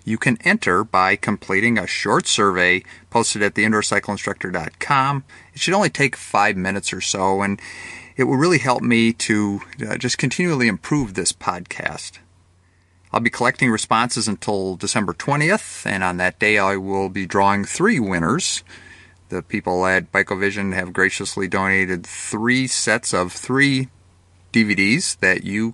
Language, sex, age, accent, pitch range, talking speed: English, male, 40-59, American, 90-120 Hz, 145 wpm